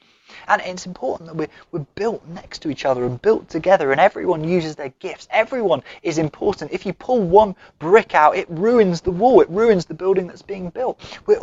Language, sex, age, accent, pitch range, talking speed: English, male, 20-39, British, 150-195 Hz, 205 wpm